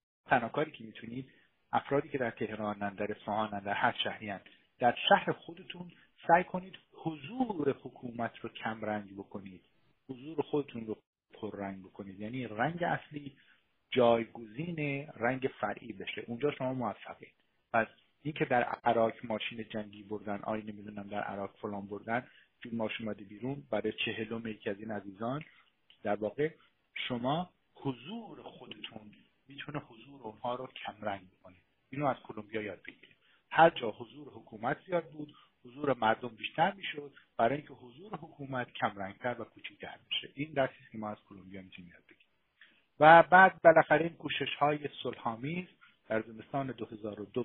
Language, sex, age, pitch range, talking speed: Persian, male, 50-69, 110-145 Hz, 140 wpm